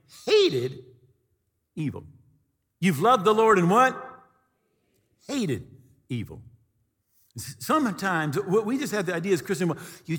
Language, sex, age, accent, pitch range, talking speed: English, male, 50-69, American, 120-185 Hz, 125 wpm